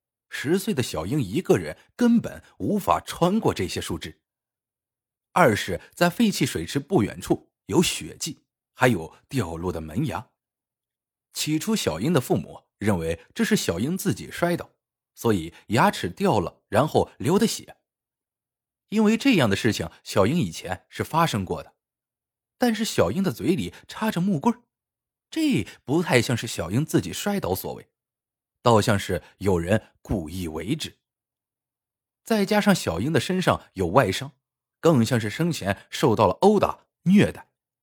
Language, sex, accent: Chinese, male, native